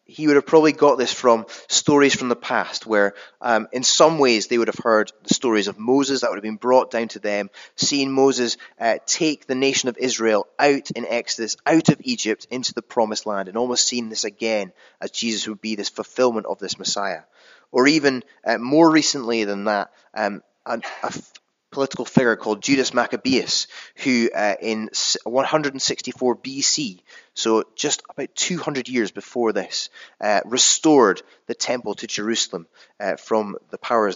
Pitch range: 110-135 Hz